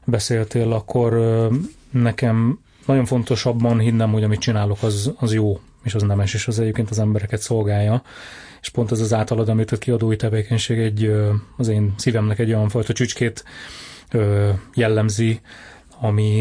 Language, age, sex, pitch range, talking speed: Hungarian, 30-49, male, 105-120 Hz, 145 wpm